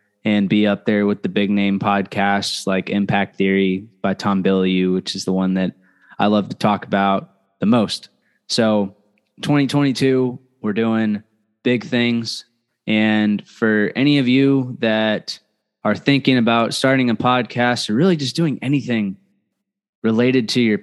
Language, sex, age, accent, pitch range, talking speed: English, male, 20-39, American, 95-110 Hz, 155 wpm